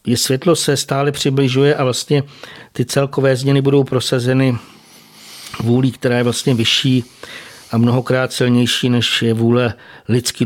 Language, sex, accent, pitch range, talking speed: Czech, male, native, 120-135 Hz, 140 wpm